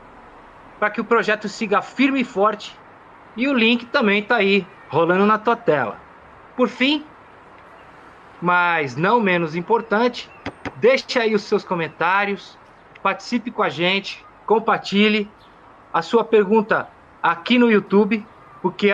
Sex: male